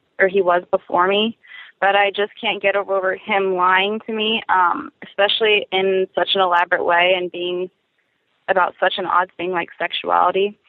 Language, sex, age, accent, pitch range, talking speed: English, female, 20-39, American, 180-200 Hz, 175 wpm